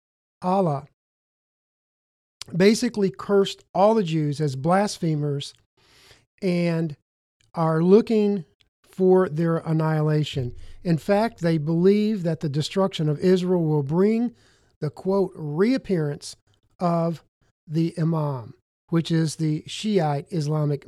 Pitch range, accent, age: 145-185 Hz, American, 50-69